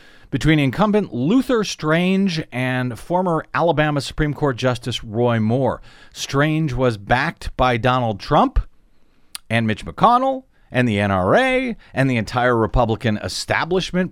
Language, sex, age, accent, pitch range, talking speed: English, male, 40-59, American, 115-160 Hz, 125 wpm